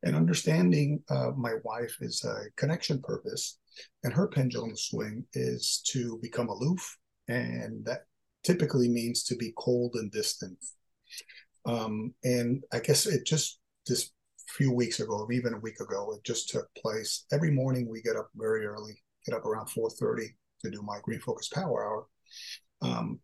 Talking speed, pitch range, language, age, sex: 165 wpm, 115-150 Hz, English, 40-59, male